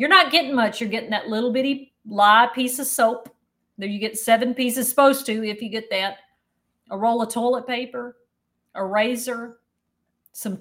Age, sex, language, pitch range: 40-59, female, English, 215-275 Hz